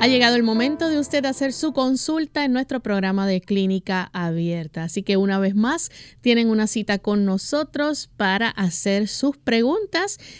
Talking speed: 165 wpm